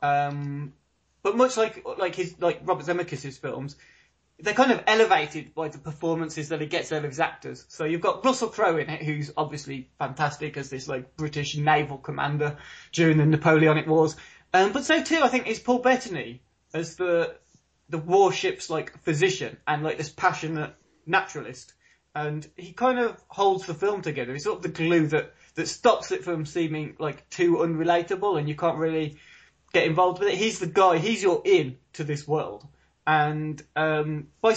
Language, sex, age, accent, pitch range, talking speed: English, male, 20-39, British, 150-195 Hz, 185 wpm